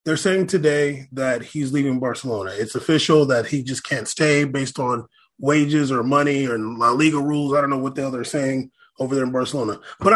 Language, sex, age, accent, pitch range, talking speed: English, male, 20-39, American, 145-205 Hz, 205 wpm